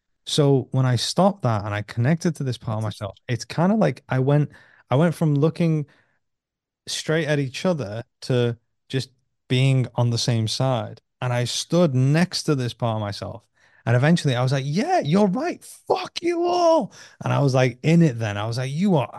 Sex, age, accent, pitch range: male, 20-39, British, 110-145 Hz